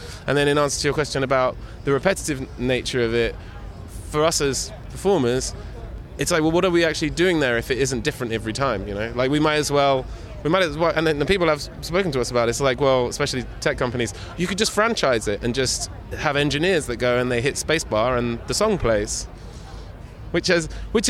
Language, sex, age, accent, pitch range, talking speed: English, male, 20-39, British, 115-150 Hz, 235 wpm